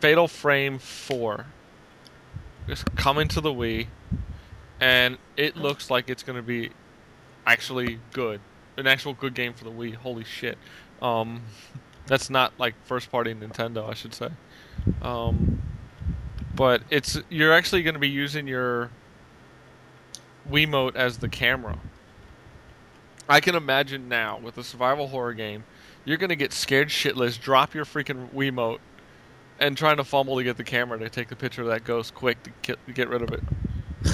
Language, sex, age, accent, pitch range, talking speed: English, male, 20-39, American, 115-135 Hz, 160 wpm